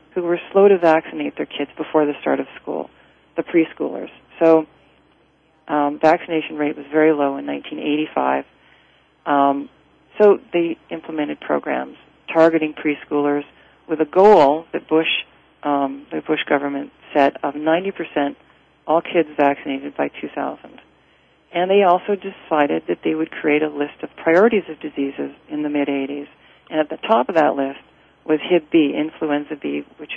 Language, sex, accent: English, female, American